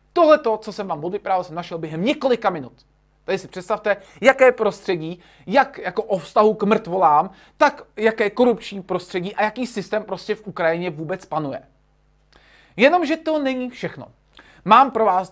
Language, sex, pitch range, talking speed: Czech, male, 180-235 Hz, 155 wpm